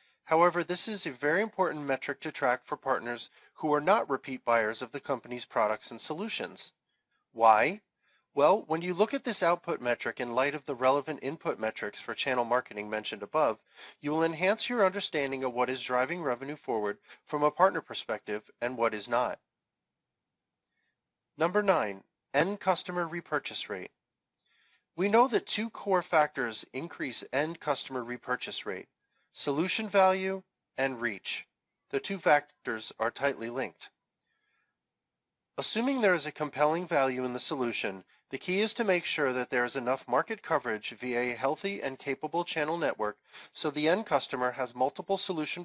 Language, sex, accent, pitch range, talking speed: English, male, American, 125-175 Hz, 165 wpm